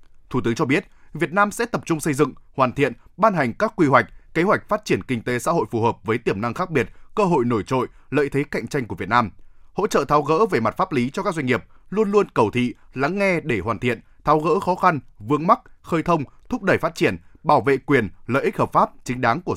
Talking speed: 265 wpm